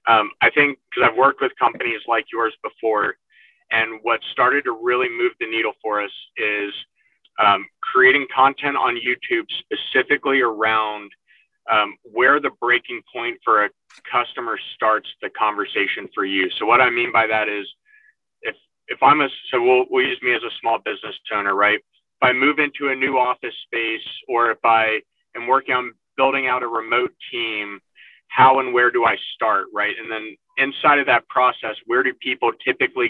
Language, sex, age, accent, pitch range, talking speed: English, male, 30-49, American, 115-140 Hz, 180 wpm